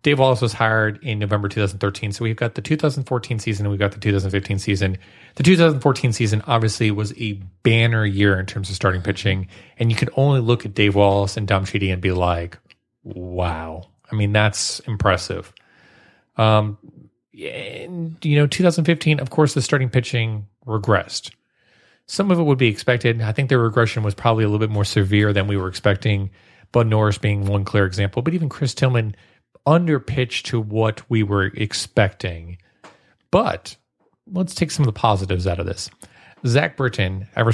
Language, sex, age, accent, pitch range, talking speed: English, male, 30-49, American, 100-120 Hz, 180 wpm